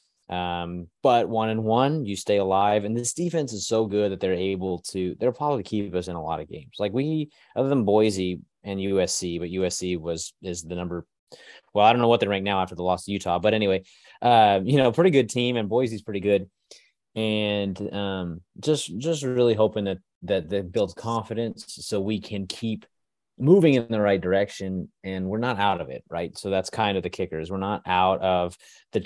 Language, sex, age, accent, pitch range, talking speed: English, male, 20-39, American, 95-120 Hz, 215 wpm